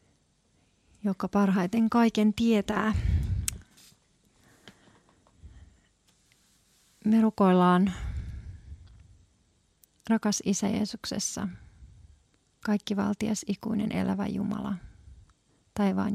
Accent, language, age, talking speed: native, Finnish, 30-49, 55 wpm